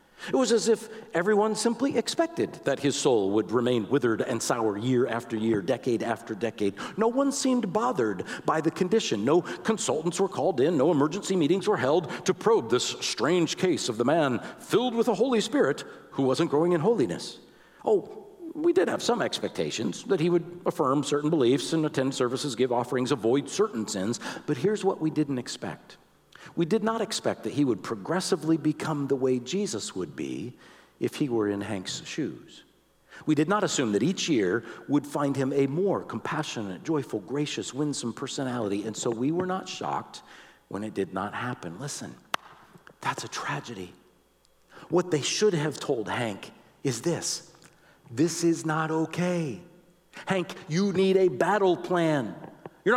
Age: 50-69